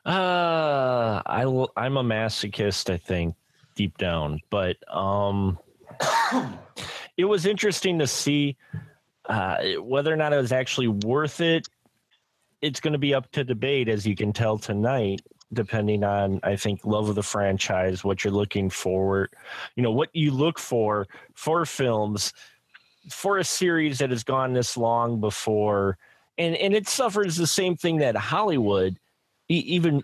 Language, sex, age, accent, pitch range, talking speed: English, male, 30-49, American, 105-150 Hz, 150 wpm